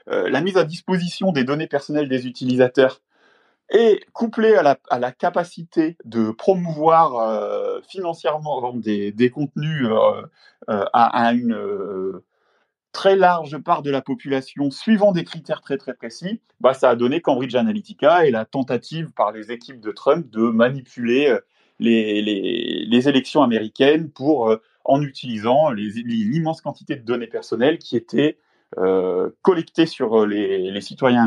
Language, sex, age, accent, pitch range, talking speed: French, male, 30-49, French, 120-185 Hz, 155 wpm